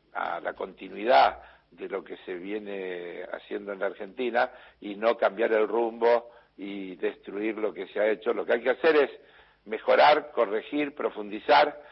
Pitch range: 115-170 Hz